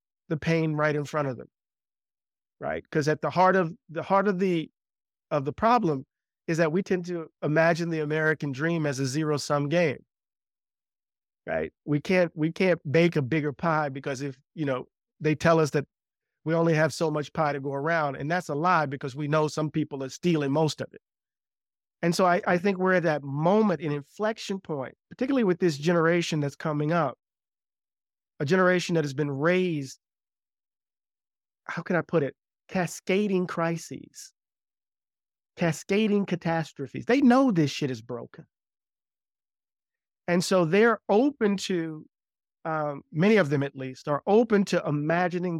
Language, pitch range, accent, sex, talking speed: English, 150-180 Hz, American, male, 170 wpm